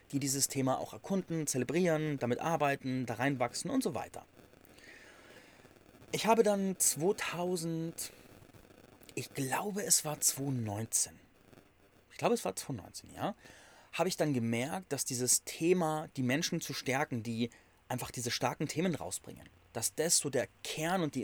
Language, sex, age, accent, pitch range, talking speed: German, male, 30-49, German, 120-165 Hz, 145 wpm